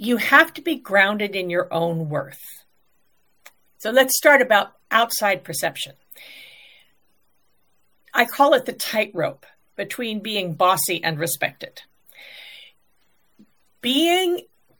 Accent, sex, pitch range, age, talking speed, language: American, female, 195-255 Hz, 50-69, 105 wpm, English